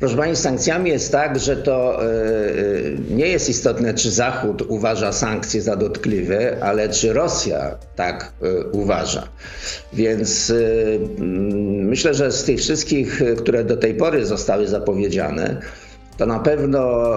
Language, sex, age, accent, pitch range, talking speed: Polish, male, 50-69, native, 105-125 Hz, 130 wpm